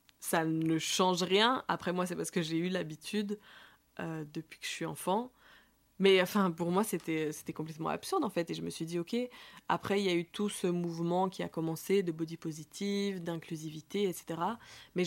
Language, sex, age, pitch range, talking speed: French, female, 20-39, 165-195 Hz, 205 wpm